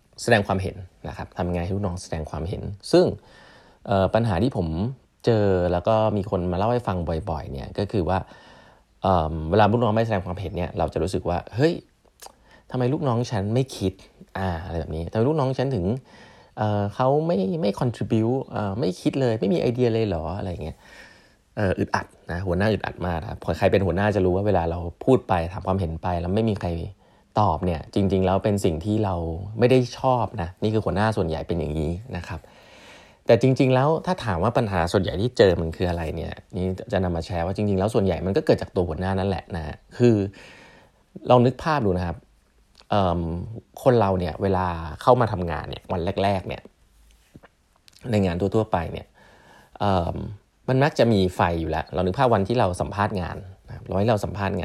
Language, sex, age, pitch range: Thai, male, 20-39, 90-115 Hz